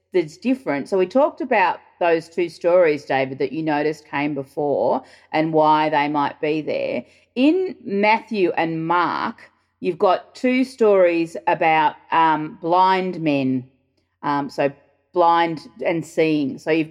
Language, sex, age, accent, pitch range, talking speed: English, female, 30-49, Australian, 140-175 Hz, 140 wpm